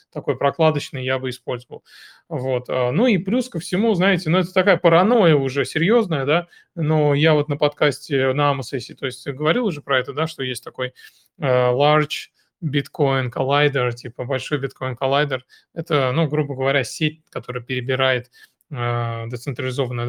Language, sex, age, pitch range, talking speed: Russian, male, 20-39, 130-160 Hz, 150 wpm